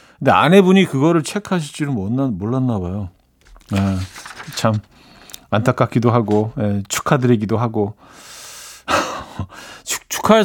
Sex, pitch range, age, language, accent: male, 110-160 Hz, 40-59, Korean, native